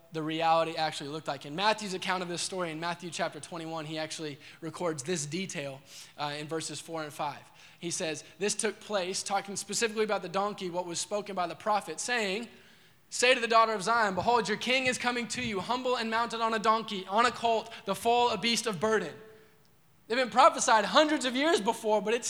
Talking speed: 215 wpm